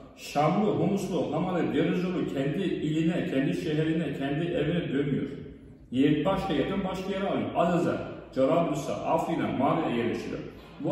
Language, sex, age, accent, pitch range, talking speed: Turkish, male, 40-59, native, 140-165 Hz, 120 wpm